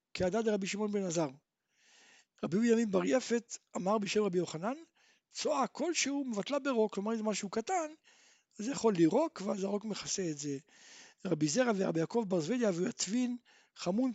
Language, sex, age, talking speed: Hebrew, male, 60-79, 175 wpm